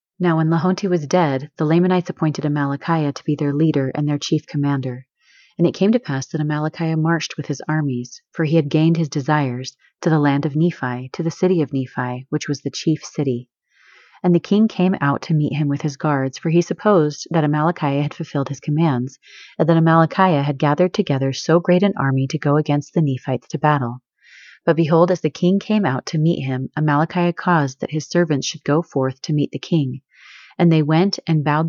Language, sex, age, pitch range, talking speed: English, female, 30-49, 140-170 Hz, 215 wpm